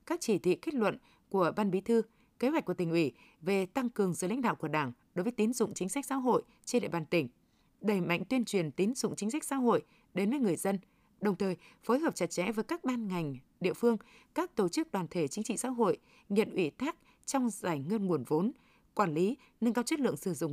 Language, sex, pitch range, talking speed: Vietnamese, female, 180-240 Hz, 250 wpm